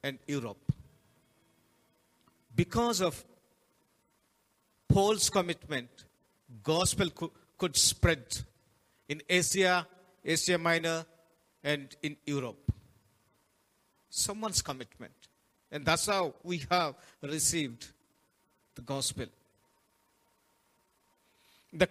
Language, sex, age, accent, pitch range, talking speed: Telugu, male, 50-69, native, 140-195 Hz, 75 wpm